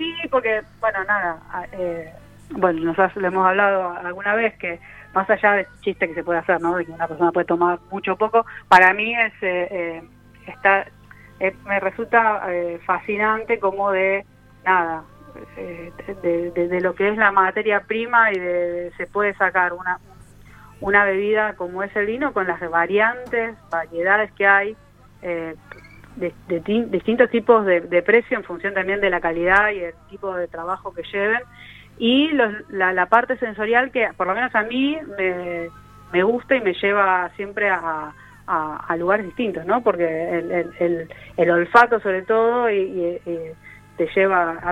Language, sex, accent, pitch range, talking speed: Spanish, female, Argentinian, 170-210 Hz, 180 wpm